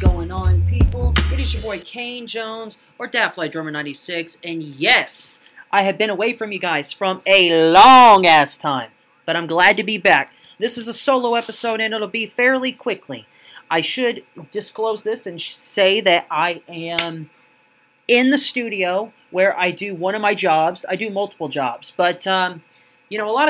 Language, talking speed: English, 185 wpm